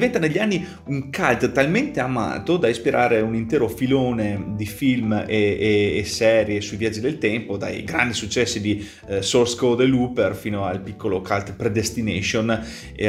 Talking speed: 170 wpm